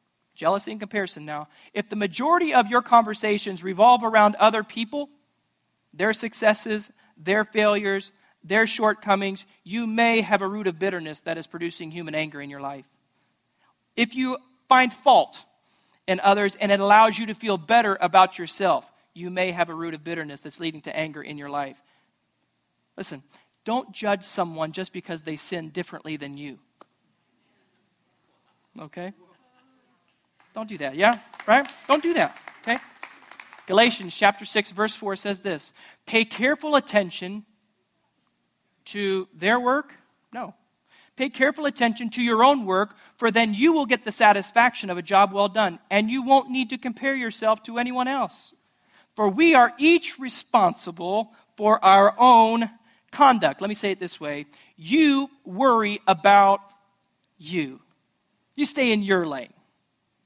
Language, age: English, 40-59